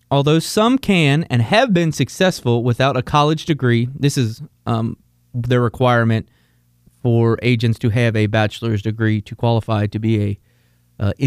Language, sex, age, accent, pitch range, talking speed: English, male, 20-39, American, 115-160 Hz, 155 wpm